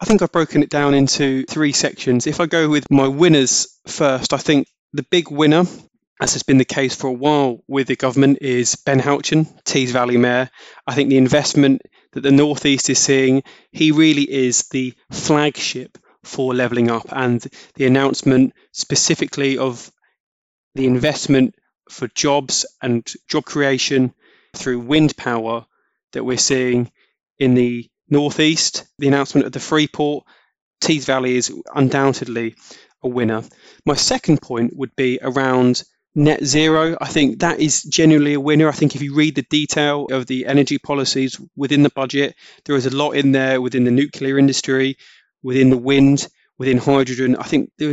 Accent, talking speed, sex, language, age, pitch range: British, 170 wpm, male, English, 20-39, 130-145 Hz